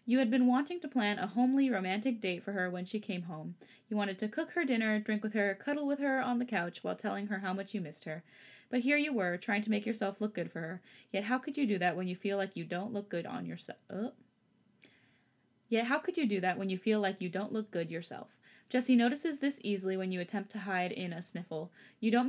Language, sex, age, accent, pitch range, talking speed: English, female, 20-39, American, 185-255 Hz, 260 wpm